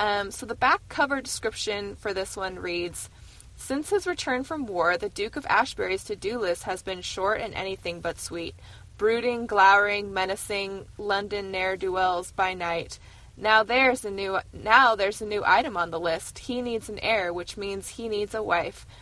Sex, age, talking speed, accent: female, 20-39, 185 wpm, American